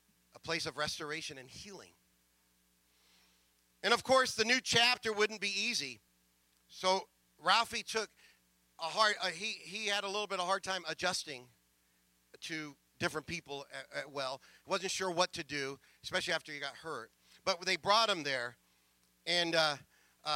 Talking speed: 160 wpm